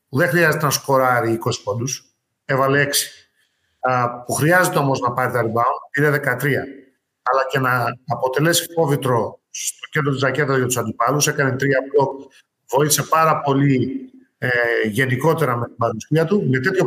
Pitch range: 130-155 Hz